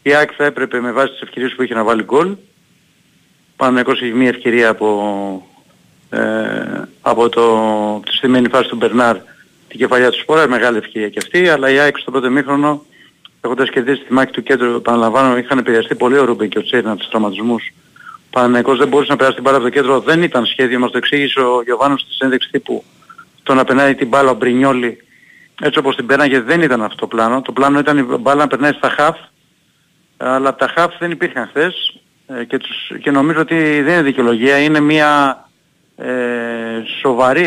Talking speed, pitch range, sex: 200 wpm, 120-150 Hz, male